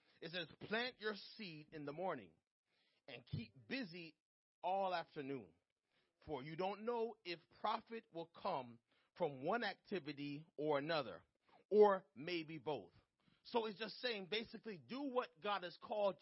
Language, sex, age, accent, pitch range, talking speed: English, male, 40-59, American, 175-235 Hz, 145 wpm